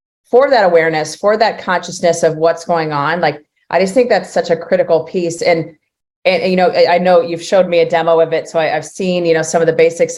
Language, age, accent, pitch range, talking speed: English, 30-49, American, 160-185 Hz, 255 wpm